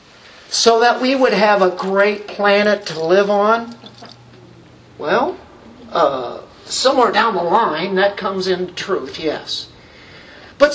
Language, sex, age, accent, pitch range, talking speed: English, male, 50-69, American, 175-230 Hz, 130 wpm